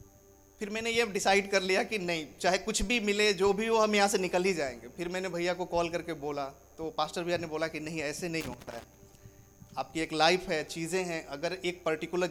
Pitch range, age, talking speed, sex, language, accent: 145-185 Hz, 30-49, 235 wpm, male, Hindi, native